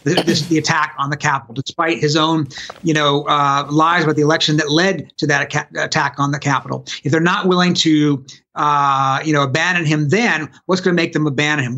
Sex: male